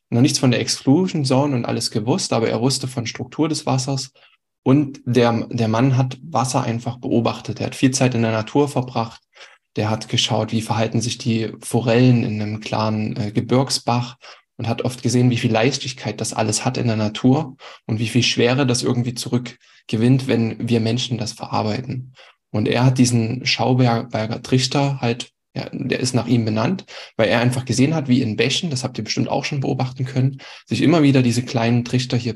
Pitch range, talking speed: 115-130 Hz, 195 wpm